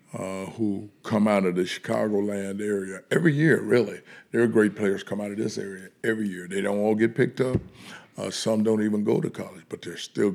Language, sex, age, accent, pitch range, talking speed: English, male, 60-79, American, 100-115 Hz, 220 wpm